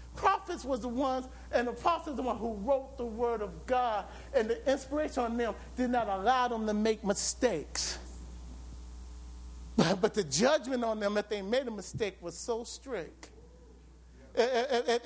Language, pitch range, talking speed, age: English, 215-305 Hz, 165 wpm, 50-69